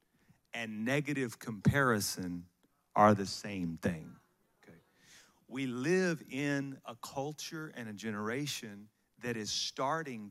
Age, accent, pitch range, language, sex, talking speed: 40-59, American, 125-170 Hz, English, male, 110 wpm